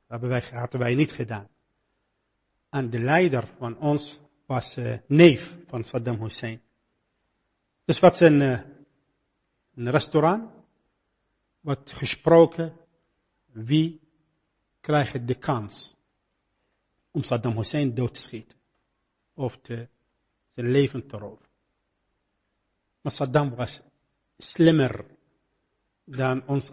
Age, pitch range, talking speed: 50-69, 125-170 Hz, 110 wpm